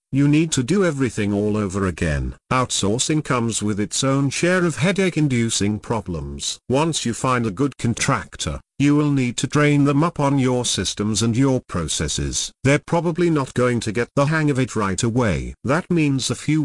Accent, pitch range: British, 105-145 Hz